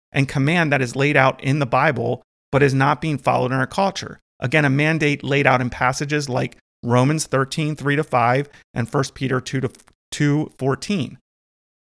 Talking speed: 160 wpm